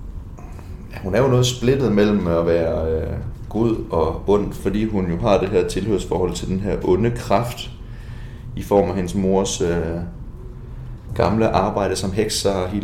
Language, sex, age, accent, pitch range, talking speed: Danish, male, 30-49, native, 90-115 Hz, 170 wpm